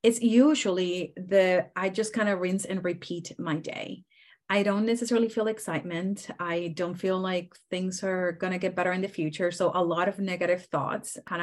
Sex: female